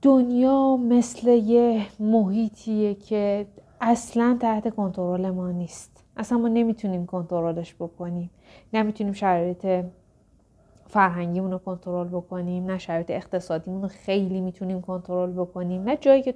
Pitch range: 180-220 Hz